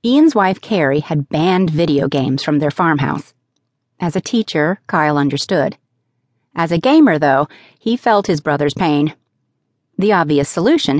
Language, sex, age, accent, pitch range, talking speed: English, female, 40-59, American, 145-185 Hz, 145 wpm